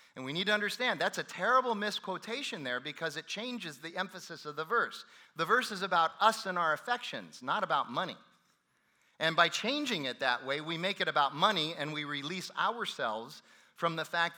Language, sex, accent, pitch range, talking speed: English, male, American, 150-195 Hz, 195 wpm